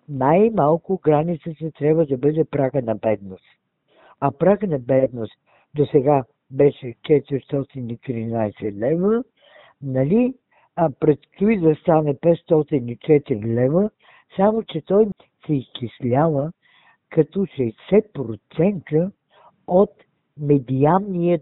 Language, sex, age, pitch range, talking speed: Bulgarian, female, 60-79, 130-170 Hz, 95 wpm